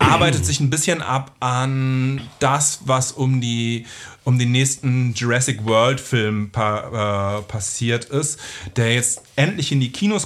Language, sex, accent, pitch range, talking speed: German, male, German, 115-145 Hz, 125 wpm